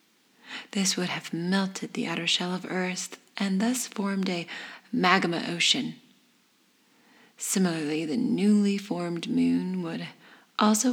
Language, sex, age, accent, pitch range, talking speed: English, female, 30-49, American, 190-245 Hz, 120 wpm